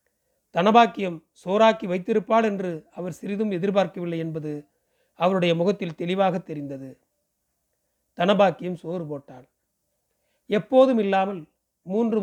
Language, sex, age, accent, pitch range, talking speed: Tamil, male, 40-59, native, 165-210 Hz, 90 wpm